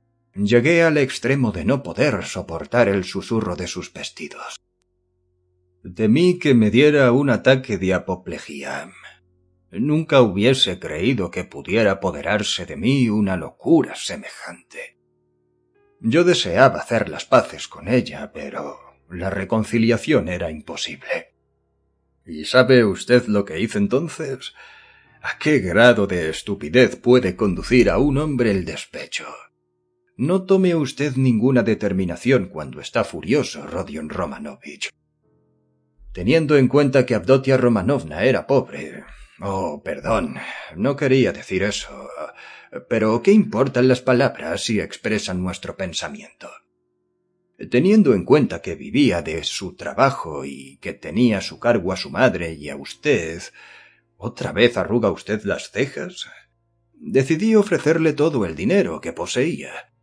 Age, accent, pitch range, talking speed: 40-59, Spanish, 90-130 Hz, 130 wpm